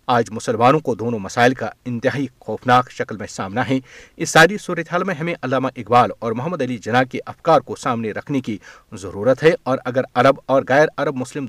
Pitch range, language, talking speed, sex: 120-160 Hz, Urdu, 200 wpm, male